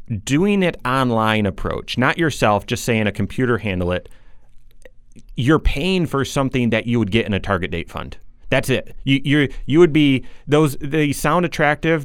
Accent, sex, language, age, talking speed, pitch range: American, male, English, 30-49, 180 wpm, 110-140 Hz